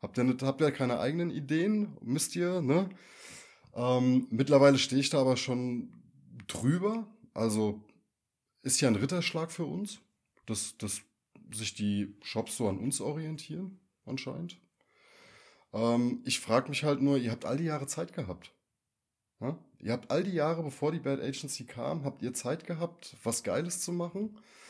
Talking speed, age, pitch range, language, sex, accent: 165 wpm, 20-39, 110-150 Hz, German, male, German